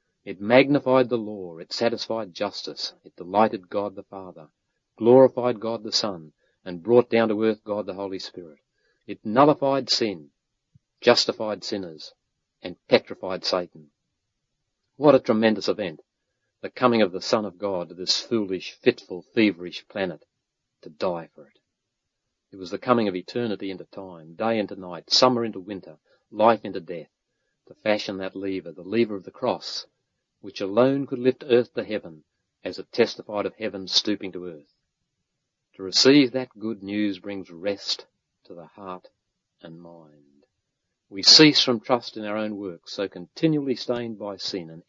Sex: male